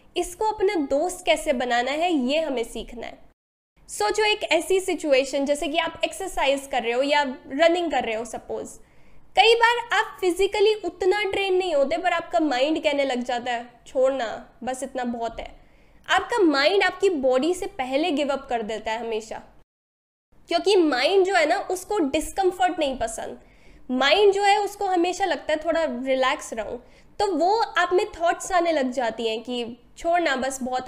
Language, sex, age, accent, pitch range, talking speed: Hindi, female, 10-29, native, 280-385 Hz, 95 wpm